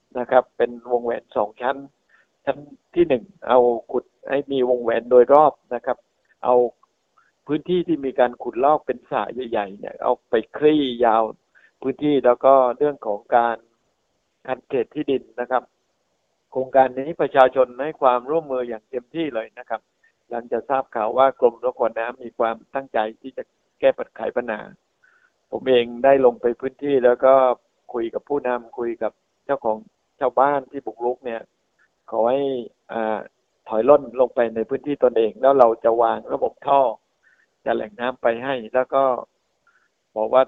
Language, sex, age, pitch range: Thai, male, 60-79, 120-140 Hz